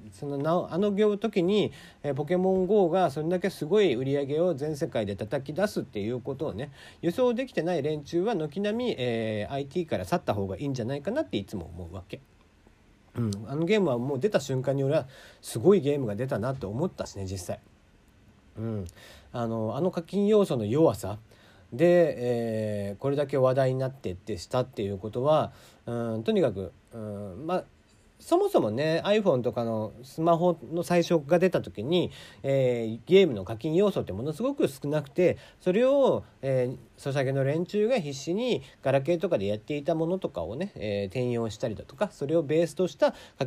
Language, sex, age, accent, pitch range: Japanese, male, 40-59, native, 110-175 Hz